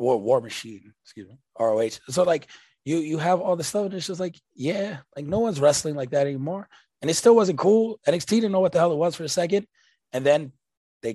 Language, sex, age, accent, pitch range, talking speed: English, male, 20-39, American, 135-185 Hz, 235 wpm